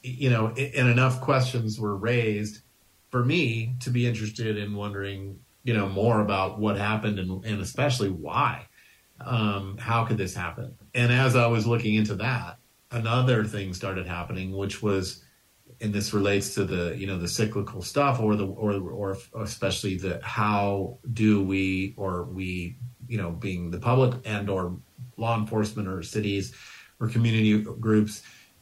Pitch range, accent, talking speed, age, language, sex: 100-120 Hz, American, 160 wpm, 40-59, English, male